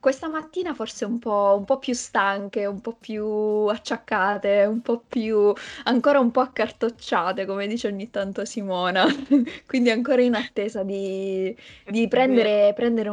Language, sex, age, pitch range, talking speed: Italian, female, 20-39, 200-240 Hz, 150 wpm